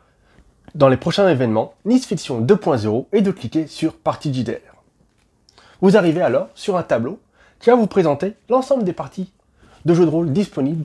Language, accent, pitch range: French, French, 125-180 Hz